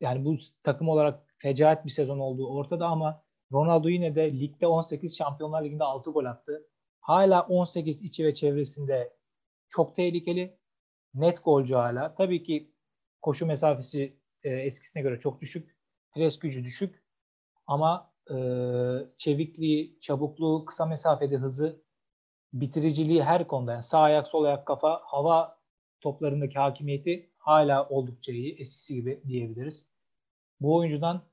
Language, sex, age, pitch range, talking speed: Turkish, male, 40-59, 135-160 Hz, 130 wpm